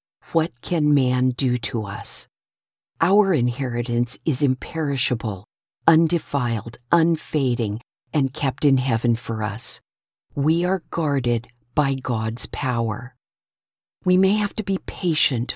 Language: English